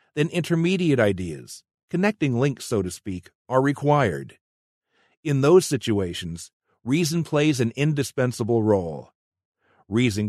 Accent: American